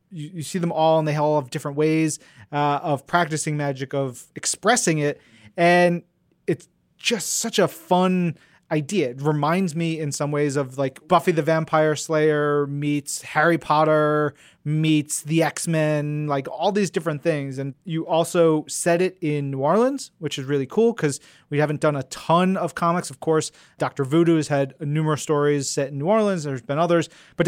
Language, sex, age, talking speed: English, male, 30-49, 185 wpm